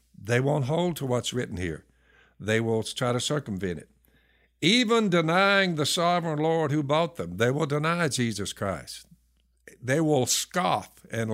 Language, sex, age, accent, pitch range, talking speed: English, male, 60-79, American, 110-150 Hz, 160 wpm